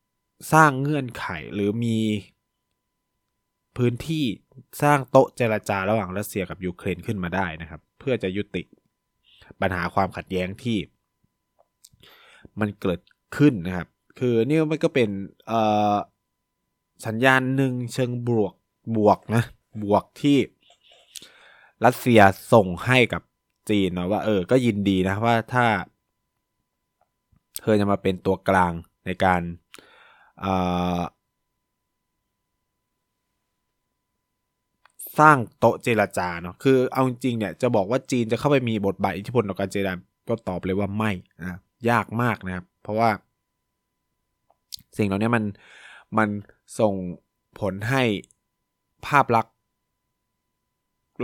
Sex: male